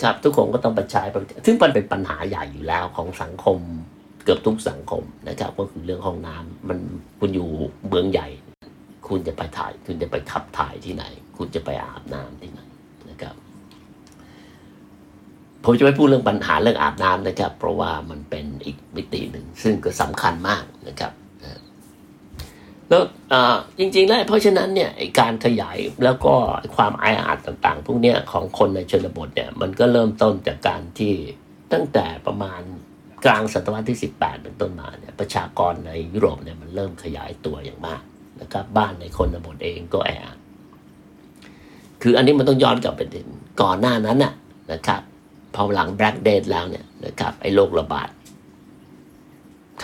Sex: male